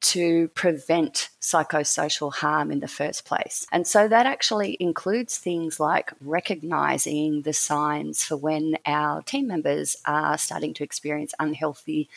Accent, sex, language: Australian, female, English